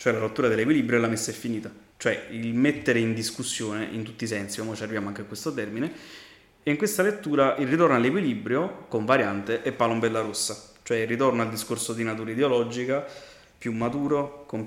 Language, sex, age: Italian, male, 20-39